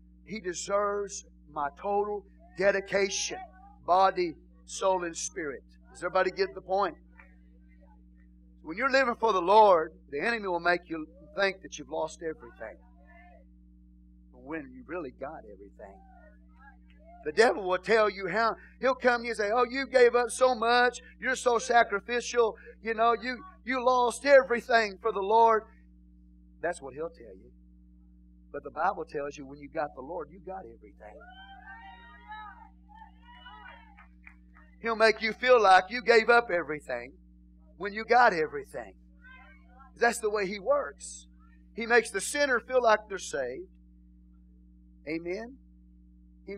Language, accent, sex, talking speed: English, American, male, 145 wpm